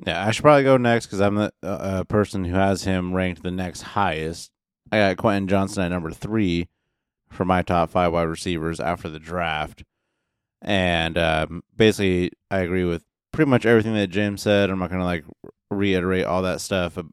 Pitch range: 85-100 Hz